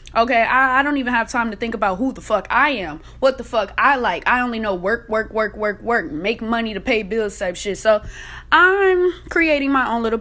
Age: 20-39